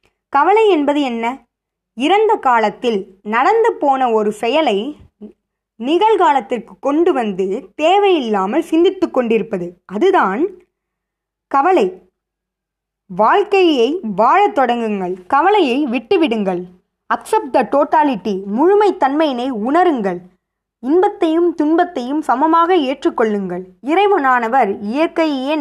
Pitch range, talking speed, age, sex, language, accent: 210-330 Hz, 80 wpm, 20-39, female, Tamil, native